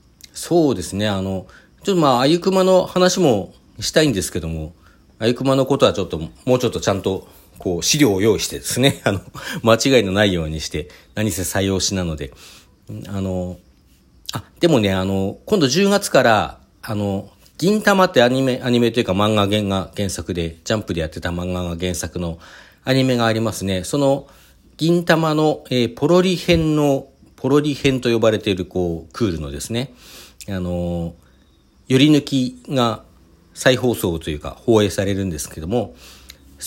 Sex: male